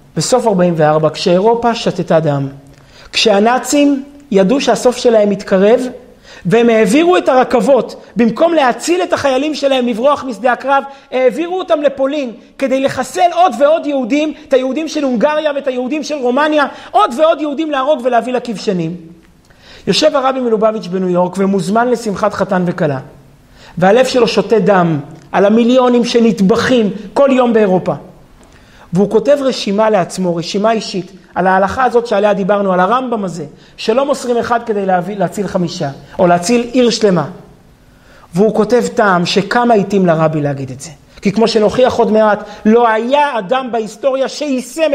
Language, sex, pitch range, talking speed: Hebrew, male, 185-260 Hz, 145 wpm